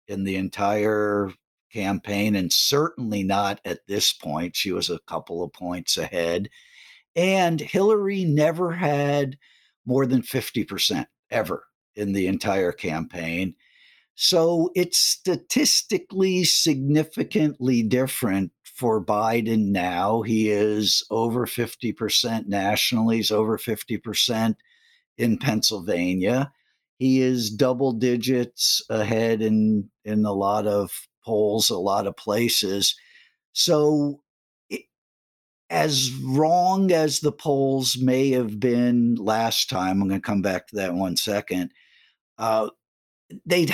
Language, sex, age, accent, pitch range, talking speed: English, male, 50-69, American, 100-145 Hz, 120 wpm